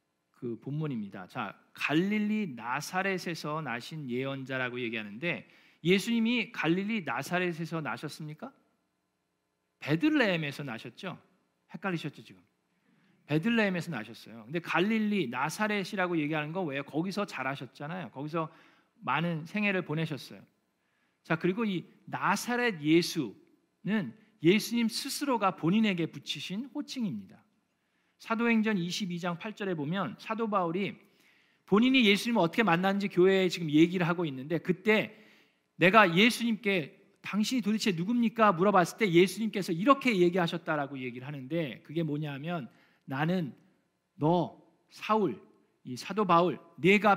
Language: Korean